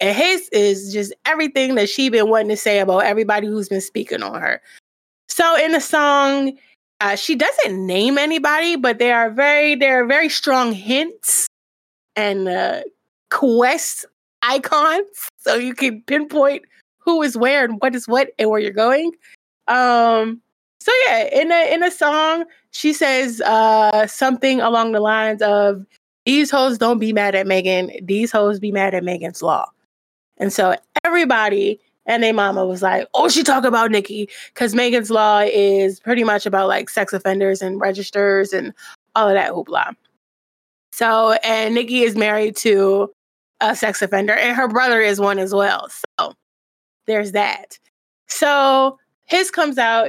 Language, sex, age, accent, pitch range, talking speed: English, female, 20-39, American, 205-275 Hz, 160 wpm